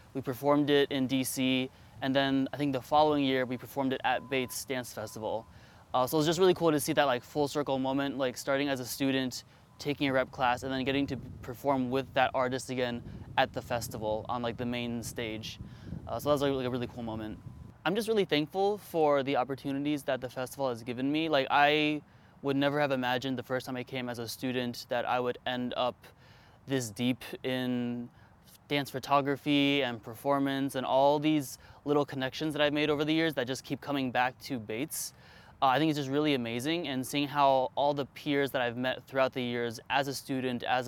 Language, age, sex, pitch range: English, 20-39, male, 125-140 Hz